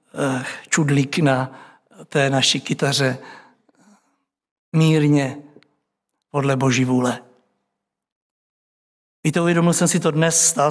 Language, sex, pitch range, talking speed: Czech, male, 145-170 Hz, 90 wpm